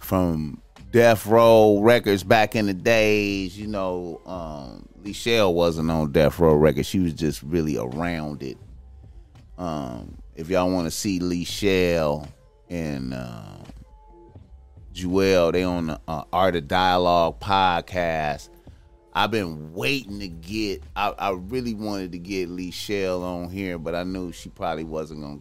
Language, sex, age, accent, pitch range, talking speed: English, male, 30-49, American, 80-100 Hz, 150 wpm